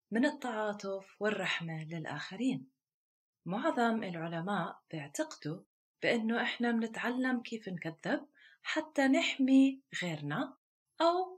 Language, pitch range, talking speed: Arabic, 175-255 Hz, 85 wpm